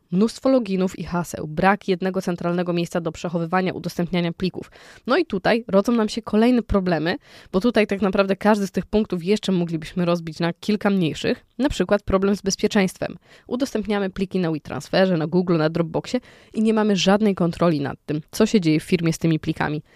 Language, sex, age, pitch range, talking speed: Polish, female, 20-39, 165-200 Hz, 185 wpm